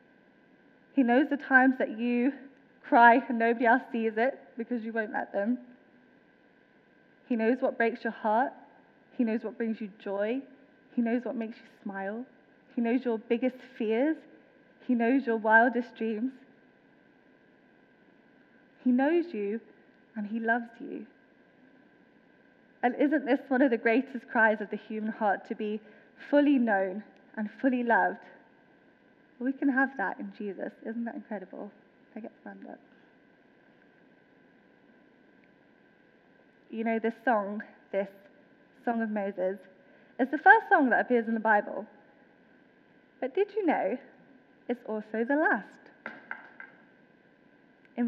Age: 10-29